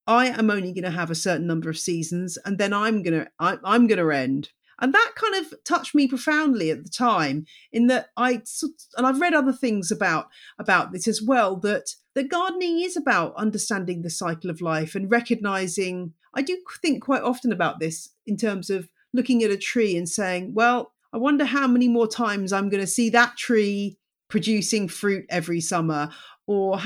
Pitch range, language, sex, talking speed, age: 185-255 Hz, English, female, 200 wpm, 40-59